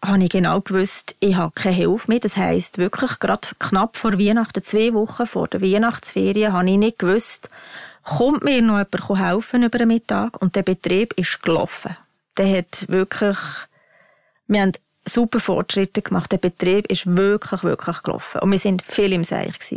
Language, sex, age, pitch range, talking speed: German, female, 20-39, 185-215 Hz, 180 wpm